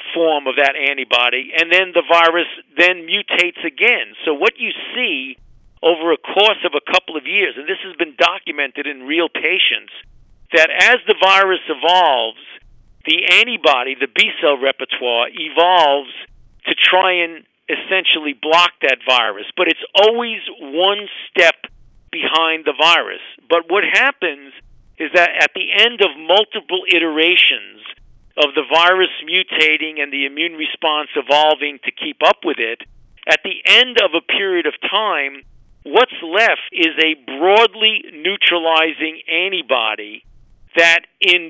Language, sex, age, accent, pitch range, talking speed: English, male, 50-69, American, 140-185 Hz, 145 wpm